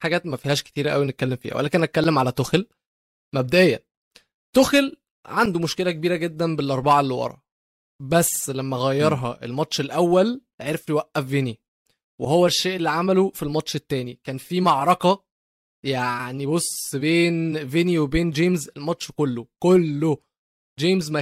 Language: Arabic